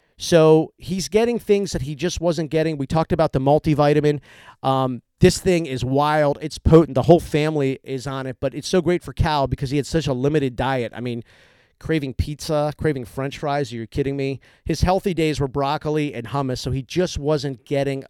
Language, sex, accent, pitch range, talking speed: English, male, American, 135-160 Hz, 210 wpm